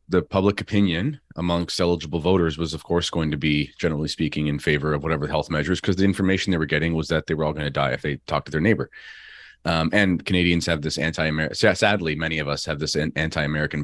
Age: 30-49